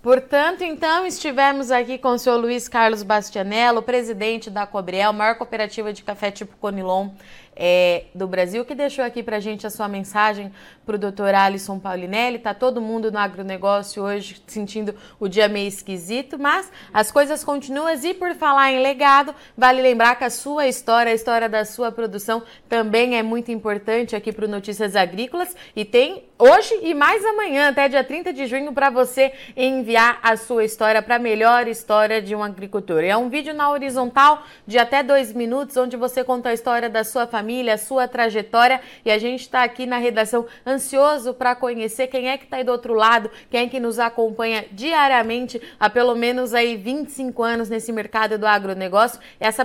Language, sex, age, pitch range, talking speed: Portuguese, female, 20-39, 215-260 Hz, 185 wpm